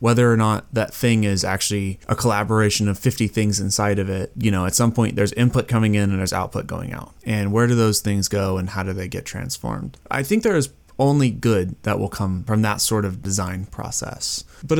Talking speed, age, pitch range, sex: 230 wpm, 20-39, 105-135 Hz, male